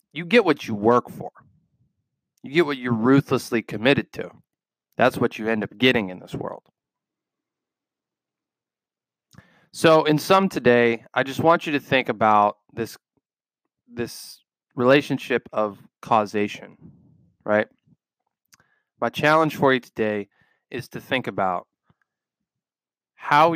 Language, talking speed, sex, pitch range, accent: English, 125 wpm, male, 110-140 Hz, American